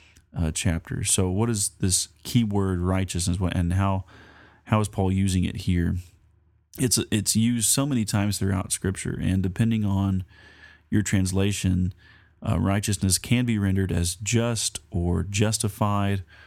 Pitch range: 90-105 Hz